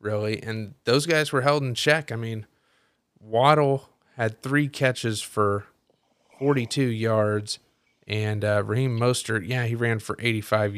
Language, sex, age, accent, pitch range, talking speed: English, male, 30-49, American, 105-130 Hz, 145 wpm